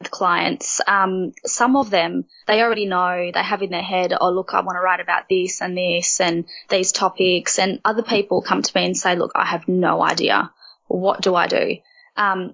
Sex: female